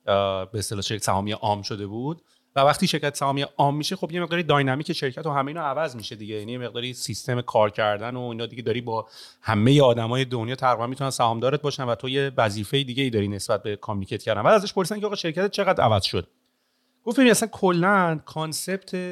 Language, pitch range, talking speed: Persian, 115-165 Hz, 205 wpm